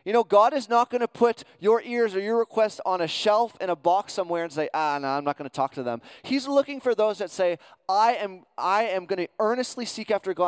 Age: 20-39